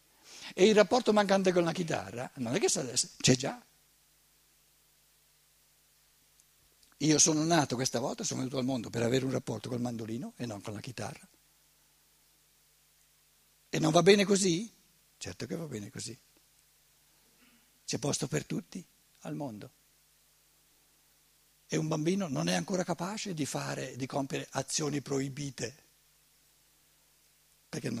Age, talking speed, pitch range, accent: 60-79, 135 wpm, 140-200 Hz, native